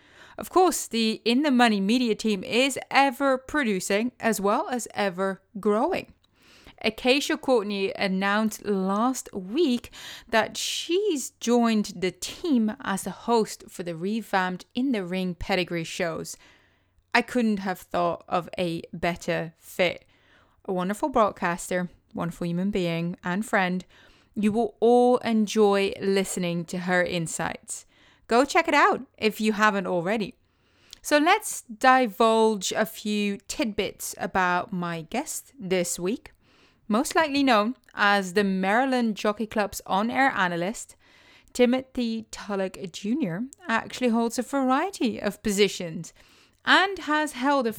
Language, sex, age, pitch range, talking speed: English, female, 30-49, 190-250 Hz, 125 wpm